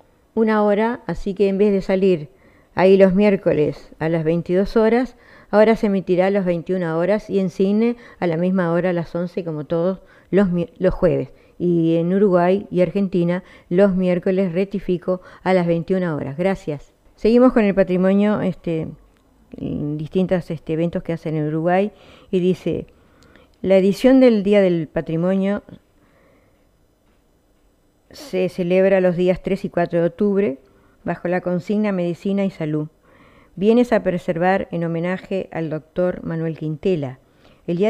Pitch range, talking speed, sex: 165-195 Hz, 155 wpm, female